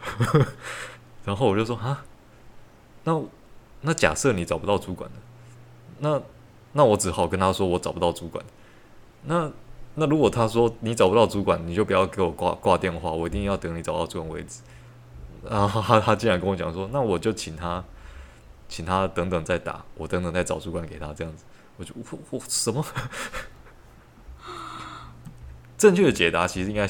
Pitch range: 85-110 Hz